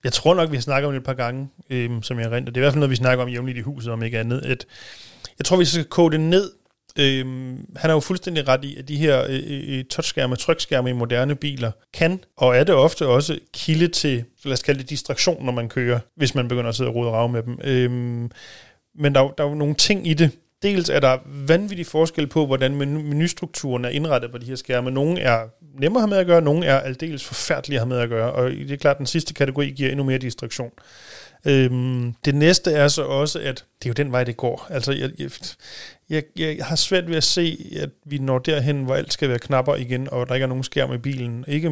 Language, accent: Danish, native